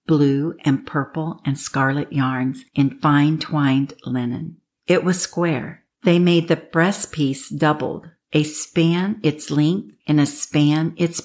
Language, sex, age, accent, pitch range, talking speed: English, female, 50-69, American, 145-165 Hz, 140 wpm